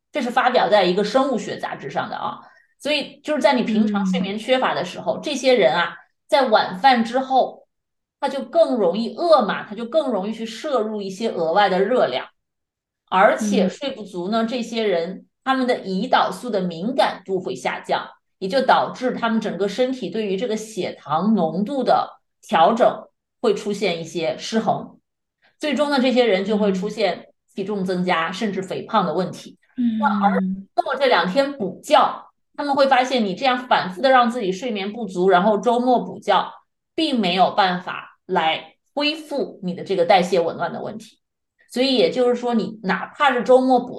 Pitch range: 190-255 Hz